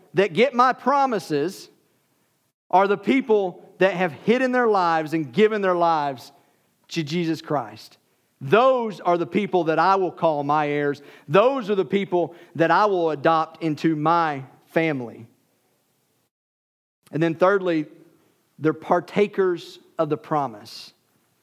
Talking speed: 135 wpm